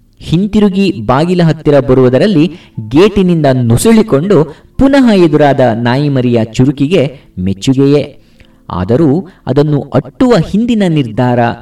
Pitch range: 120-165 Hz